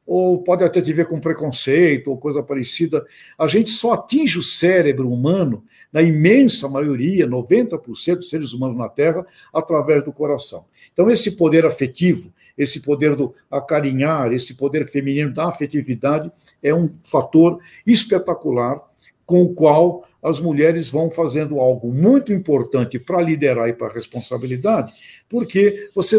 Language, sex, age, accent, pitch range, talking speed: Portuguese, male, 60-79, Brazilian, 145-190 Hz, 145 wpm